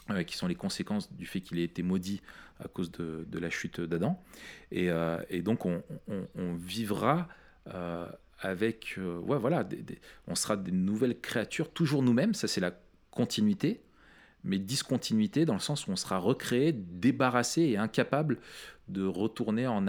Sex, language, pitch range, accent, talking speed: male, French, 95-140 Hz, French, 175 wpm